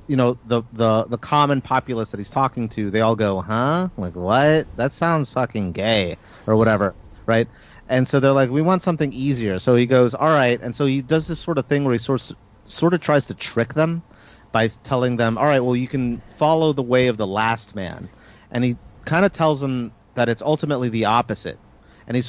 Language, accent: English, American